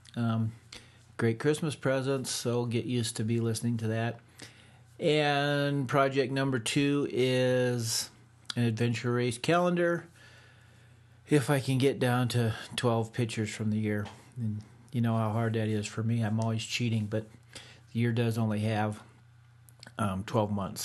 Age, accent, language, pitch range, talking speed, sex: 40-59, American, English, 115-125 Hz, 155 wpm, male